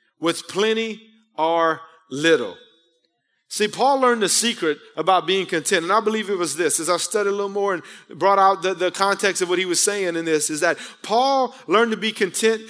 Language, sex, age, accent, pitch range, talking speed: English, male, 30-49, American, 170-210 Hz, 210 wpm